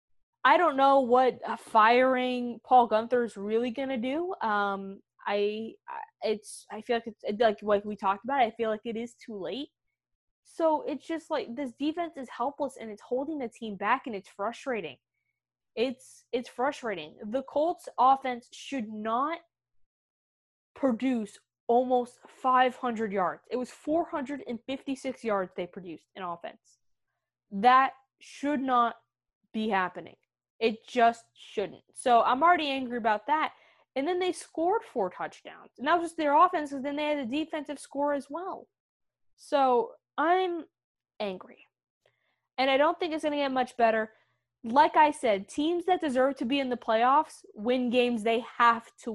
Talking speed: 165 wpm